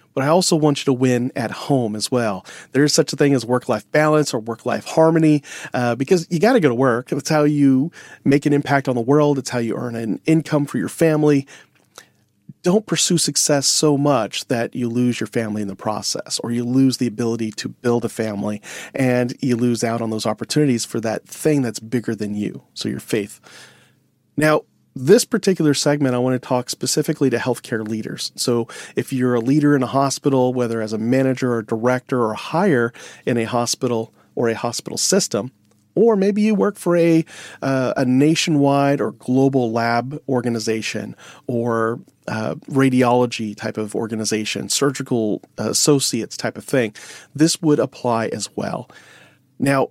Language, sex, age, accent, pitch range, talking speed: English, male, 40-59, American, 115-150 Hz, 185 wpm